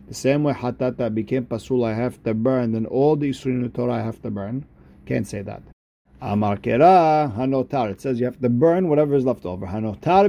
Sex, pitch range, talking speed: male, 125-155 Hz, 215 wpm